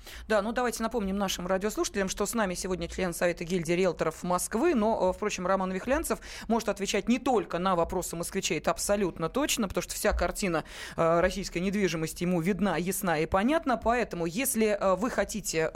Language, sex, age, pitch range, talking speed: Russian, female, 20-39, 175-220 Hz, 170 wpm